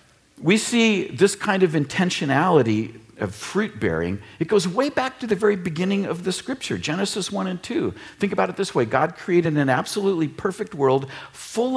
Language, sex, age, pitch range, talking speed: English, male, 50-69, 130-205 Hz, 185 wpm